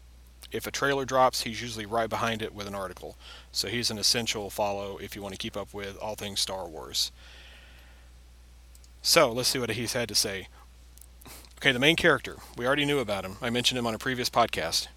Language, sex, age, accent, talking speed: English, male, 40-59, American, 210 wpm